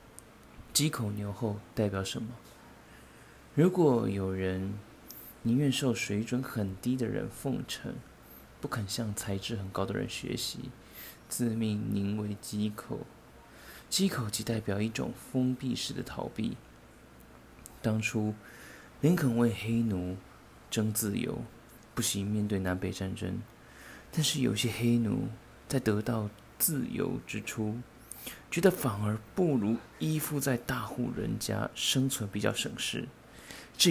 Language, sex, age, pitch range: Chinese, male, 20-39, 105-125 Hz